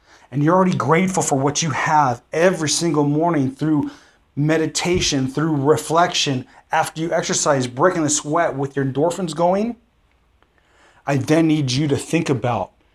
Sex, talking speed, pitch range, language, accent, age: male, 150 wpm, 120-155 Hz, English, American, 30-49